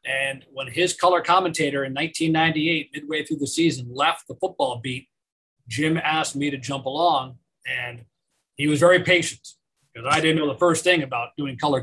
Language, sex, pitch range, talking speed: English, male, 135-170 Hz, 185 wpm